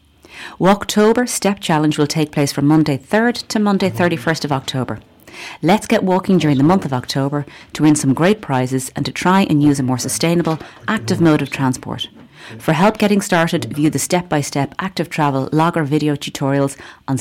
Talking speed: 180 wpm